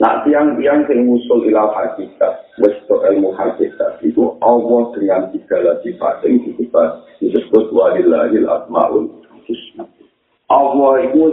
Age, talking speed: 50-69, 105 wpm